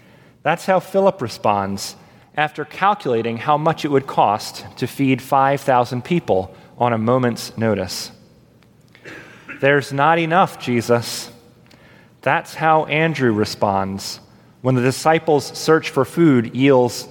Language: English